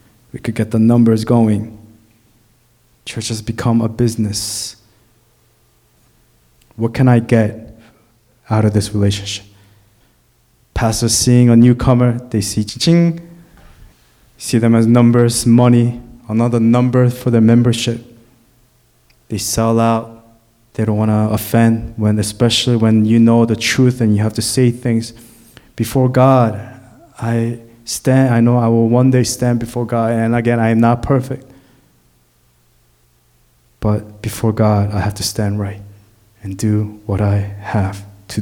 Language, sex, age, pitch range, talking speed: English, male, 20-39, 105-120 Hz, 140 wpm